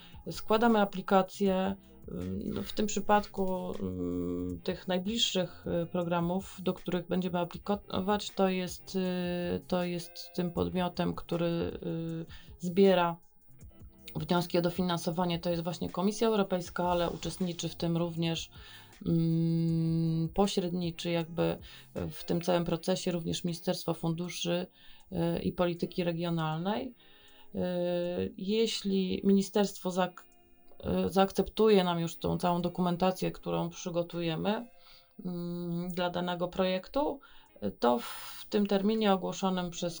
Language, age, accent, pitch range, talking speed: Polish, 30-49, native, 170-190 Hz, 95 wpm